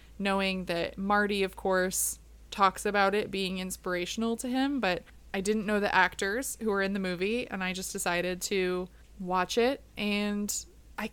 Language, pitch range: English, 185-215 Hz